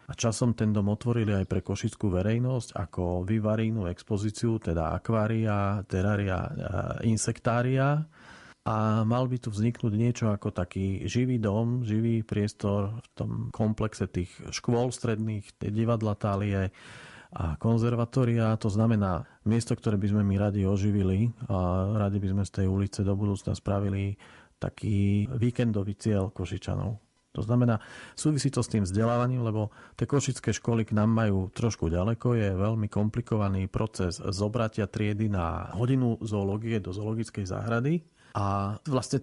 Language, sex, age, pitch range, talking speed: Slovak, male, 40-59, 100-120 Hz, 140 wpm